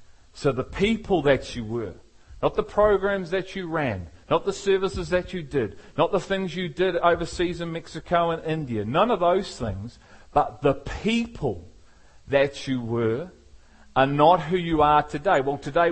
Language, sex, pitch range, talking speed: English, male, 120-170 Hz, 175 wpm